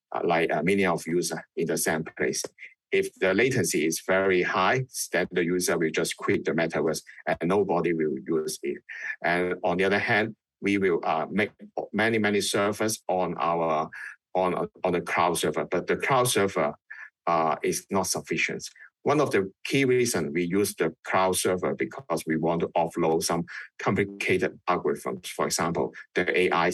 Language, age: Danish, 50-69